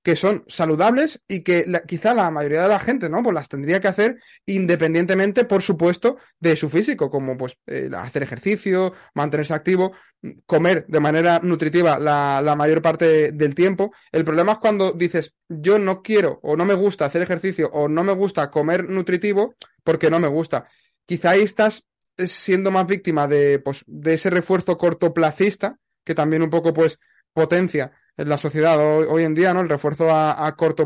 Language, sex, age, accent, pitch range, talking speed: Spanish, male, 20-39, Spanish, 155-190 Hz, 185 wpm